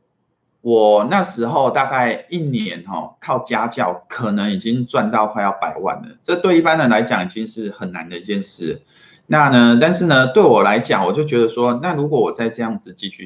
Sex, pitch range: male, 105-135 Hz